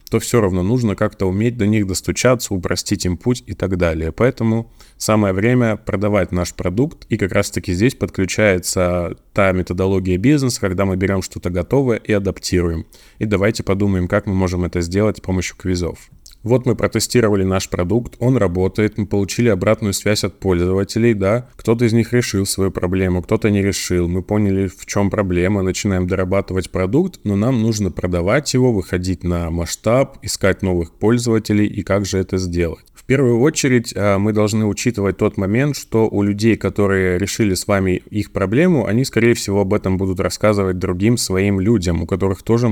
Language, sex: Russian, male